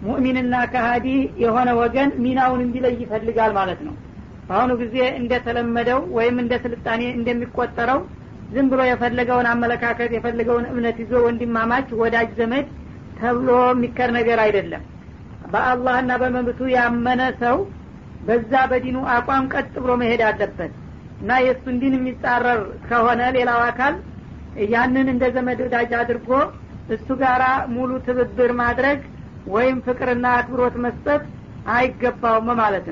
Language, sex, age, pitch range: Amharic, female, 50-69, 235-255 Hz